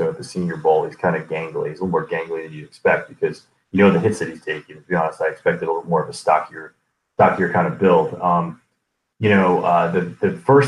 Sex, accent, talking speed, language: male, American, 265 wpm, English